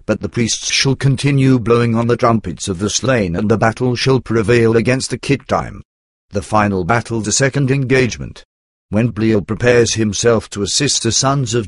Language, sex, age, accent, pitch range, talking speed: English, male, 50-69, British, 105-125 Hz, 185 wpm